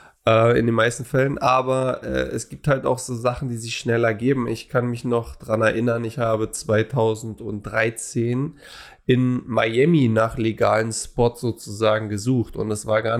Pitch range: 110-125 Hz